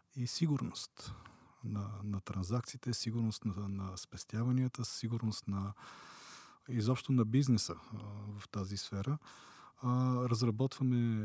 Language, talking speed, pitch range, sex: Bulgarian, 105 wpm, 105-120 Hz, male